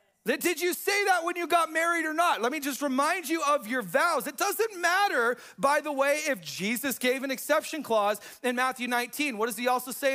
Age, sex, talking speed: 40-59, male, 225 wpm